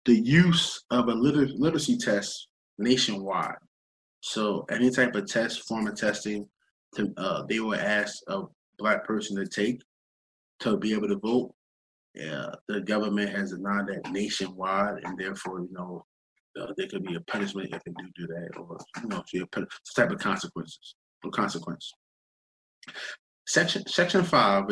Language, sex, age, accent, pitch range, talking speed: English, male, 20-39, American, 100-145 Hz, 160 wpm